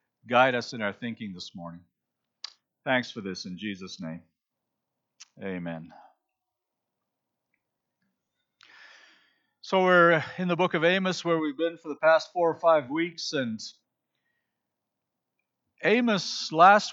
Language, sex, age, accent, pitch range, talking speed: English, male, 50-69, American, 150-205 Hz, 120 wpm